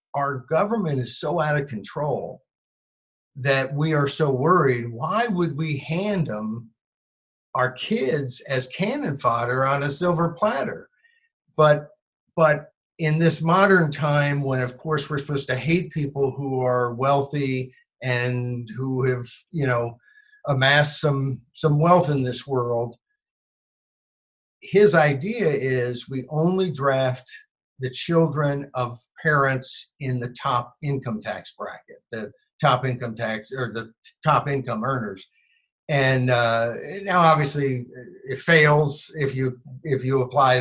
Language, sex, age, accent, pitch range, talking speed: English, male, 50-69, American, 125-160 Hz, 135 wpm